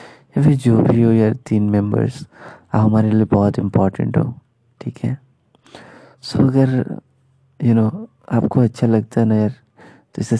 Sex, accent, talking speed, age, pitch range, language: male, native, 155 wpm, 20-39, 110-135 Hz, Hindi